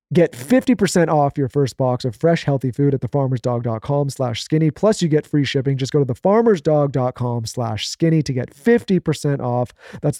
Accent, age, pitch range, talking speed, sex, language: American, 30-49, 130-155 Hz, 165 wpm, male, English